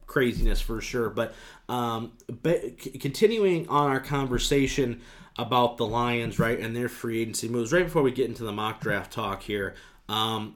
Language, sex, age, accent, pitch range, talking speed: English, male, 20-39, American, 115-140 Hz, 165 wpm